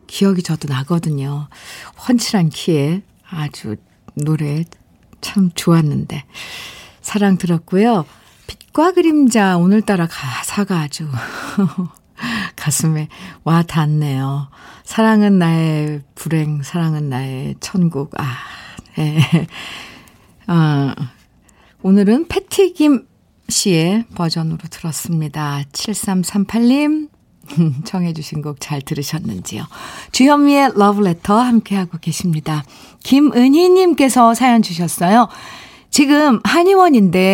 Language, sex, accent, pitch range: Korean, female, native, 160-235 Hz